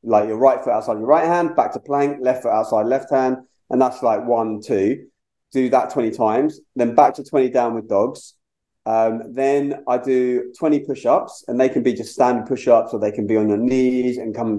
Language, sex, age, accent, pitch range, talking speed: English, male, 30-49, British, 110-130 Hz, 220 wpm